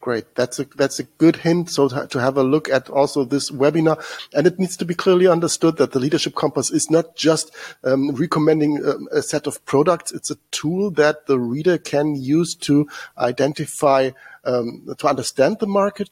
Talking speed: 195 wpm